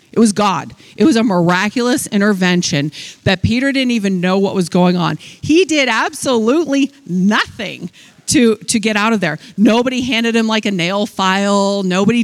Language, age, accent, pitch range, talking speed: English, 40-59, American, 180-230 Hz, 170 wpm